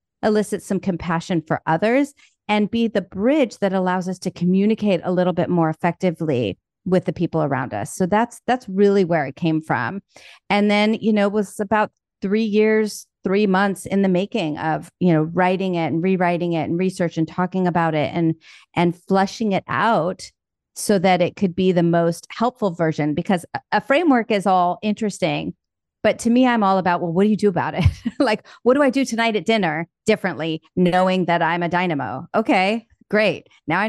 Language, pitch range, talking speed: English, 165-205 Hz, 195 wpm